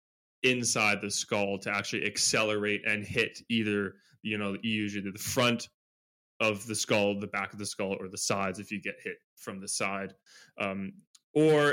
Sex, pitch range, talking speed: male, 100-115 Hz, 175 wpm